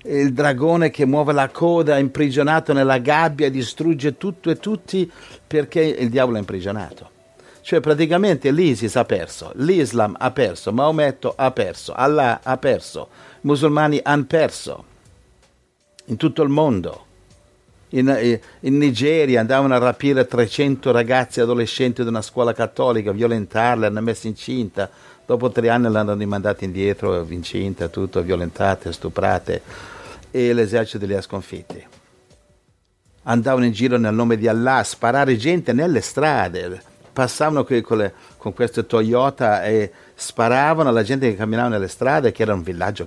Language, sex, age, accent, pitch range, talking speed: Italian, male, 50-69, native, 110-150 Hz, 145 wpm